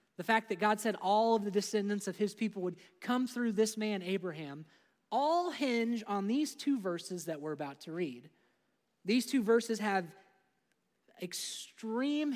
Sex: male